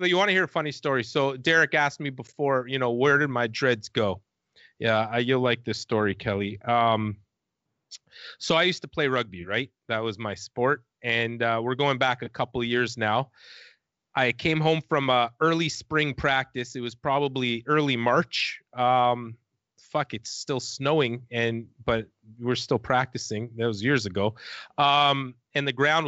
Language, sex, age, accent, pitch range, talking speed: English, male, 30-49, American, 115-140 Hz, 185 wpm